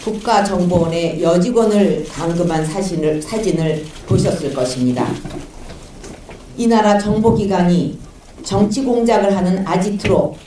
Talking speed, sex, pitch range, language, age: 80 wpm, female, 165-215 Hz, English, 50-69